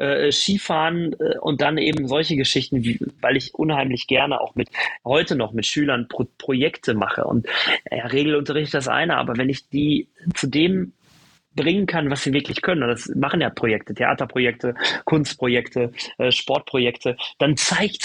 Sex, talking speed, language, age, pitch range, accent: male, 150 wpm, German, 30-49, 130-160 Hz, German